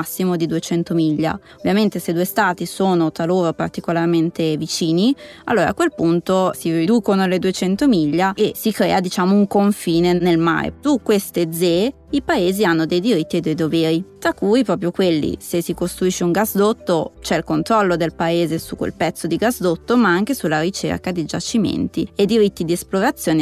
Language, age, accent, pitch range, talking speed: Italian, 20-39, native, 170-210 Hz, 180 wpm